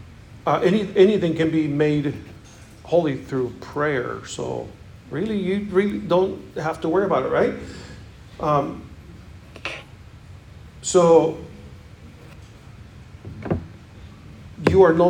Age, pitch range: 50-69, 125-165 Hz